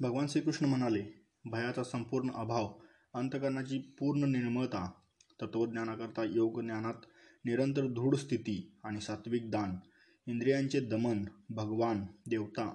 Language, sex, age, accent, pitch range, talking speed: Marathi, male, 20-39, native, 110-125 Hz, 105 wpm